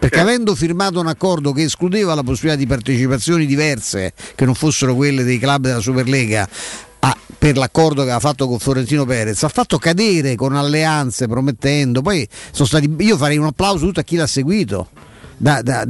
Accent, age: native, 50-69